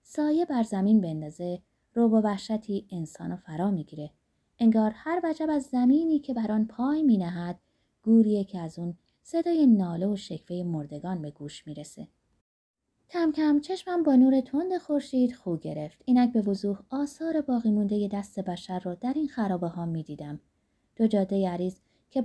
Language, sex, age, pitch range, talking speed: Persian, female, 20-39, 180-270 Hz, 160 wpm